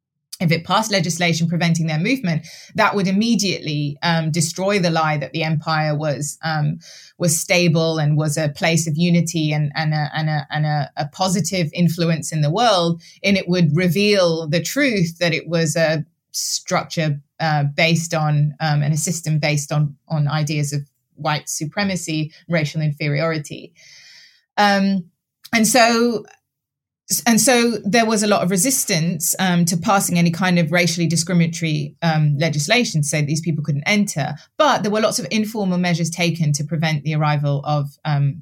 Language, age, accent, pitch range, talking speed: English, 20-39, British, 150-180 Hz, 165 wpm